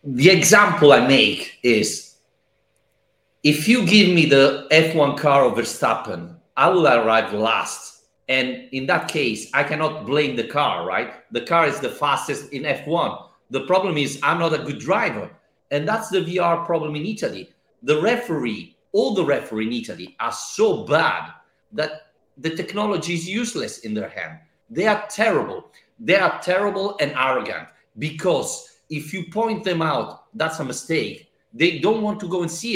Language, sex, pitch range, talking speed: English, male, 150-205 Hz, 170 wpm